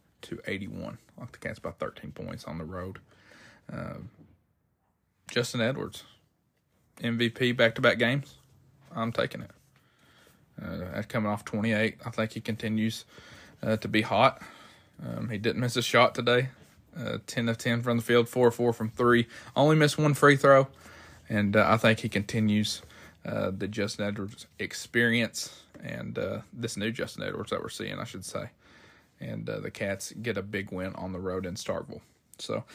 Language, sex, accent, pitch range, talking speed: English, male, American, 105-120 Hz, 170 wpm